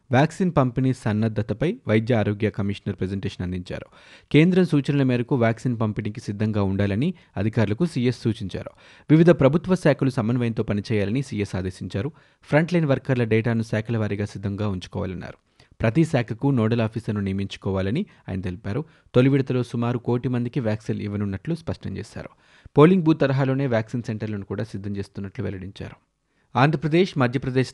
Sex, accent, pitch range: male, native, 105-135 Hz